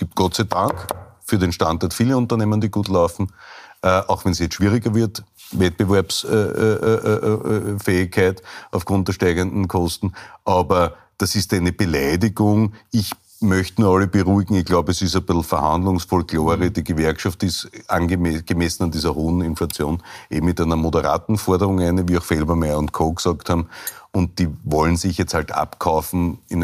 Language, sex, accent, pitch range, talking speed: German, male, Austrian, 80-95 Hz, 160 wpm